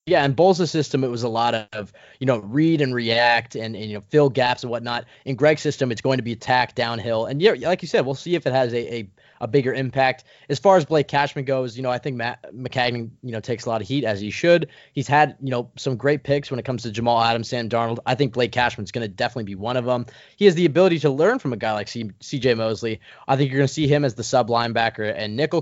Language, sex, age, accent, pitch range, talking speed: English, male, 20-39, American, 115-145 Hz, 280 wpm